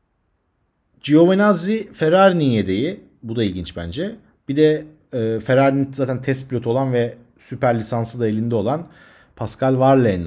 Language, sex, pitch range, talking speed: Turkish, male, 115-170 Hz, 135 wpm